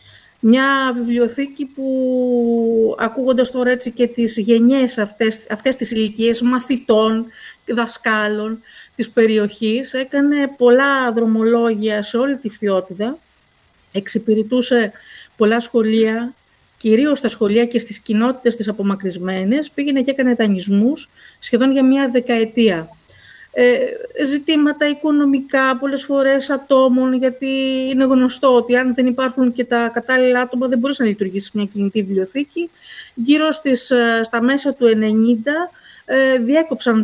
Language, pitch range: Greek, 220-265 Hz